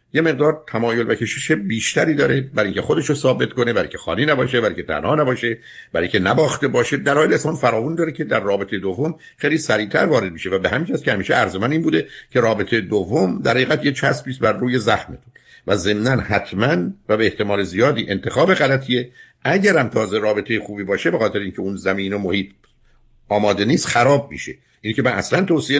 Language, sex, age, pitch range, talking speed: Persian, male, 60-79, 100-140 Hz, 185 wpm